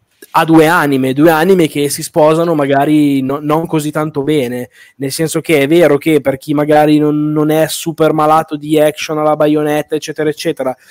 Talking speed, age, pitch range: 185 wpm, 20-39, 135-160 Hz